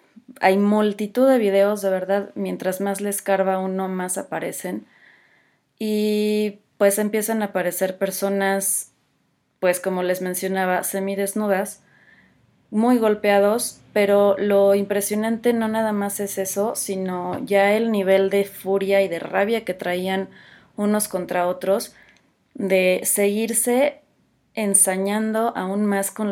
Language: Spanish